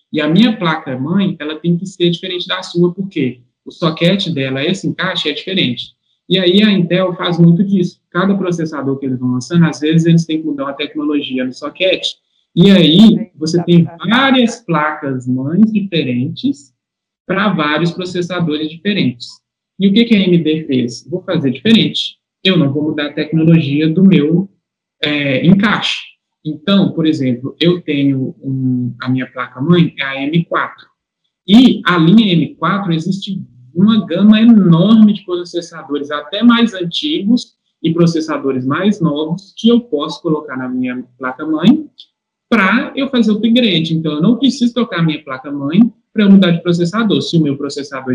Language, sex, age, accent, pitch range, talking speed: Portuguese, male, 20-39, Brazilian, 140-195 Hz, 160 wpm